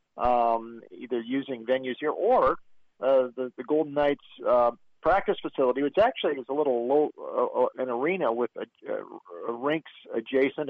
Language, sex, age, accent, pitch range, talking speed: English, male, 50-69, American, 120-145 Hz, 155 wpm